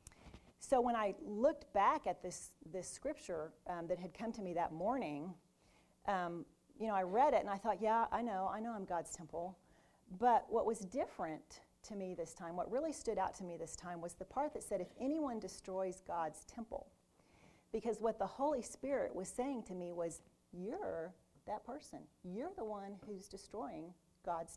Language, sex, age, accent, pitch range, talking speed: English, female, 40-59, American, 180-250 Hz, 195 wpm